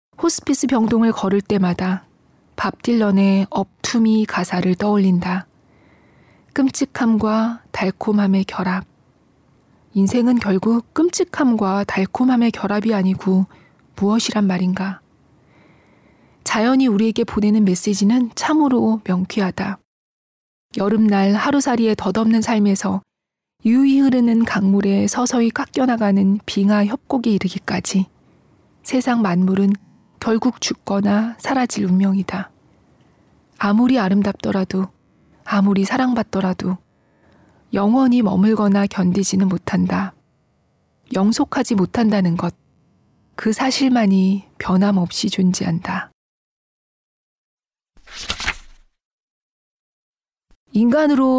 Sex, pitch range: female, 195-235 Hz